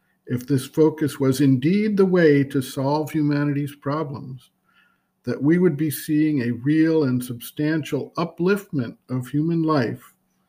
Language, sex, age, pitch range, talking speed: English, male, 50-69, 135-160 Hz, 135 wpm